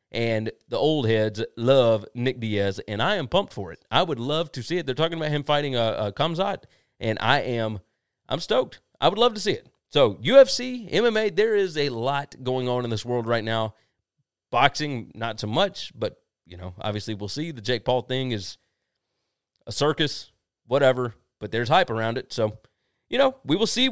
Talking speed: 205 wpm